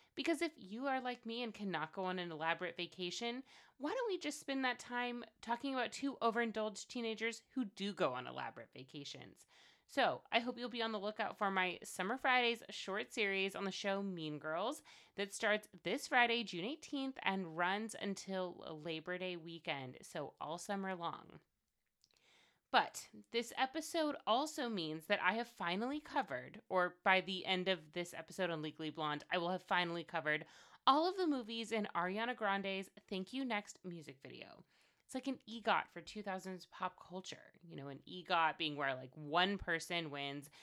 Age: 30-49